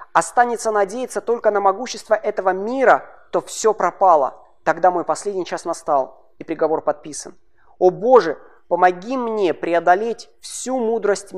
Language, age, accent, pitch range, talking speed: Russian, 20-39, native, 150-205 Hz, 130 wpm